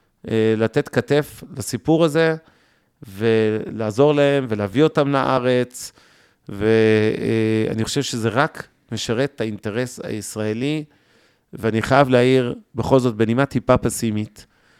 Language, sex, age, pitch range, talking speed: Hebrew, male, 40-59, 110-130 Hz, 100 wpm